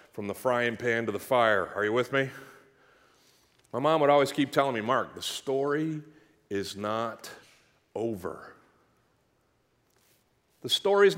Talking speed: 140 wpm